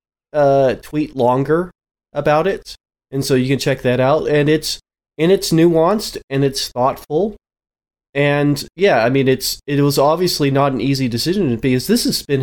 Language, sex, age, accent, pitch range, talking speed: English, male, 30-49, American, 120-145 Hz, 175 wpm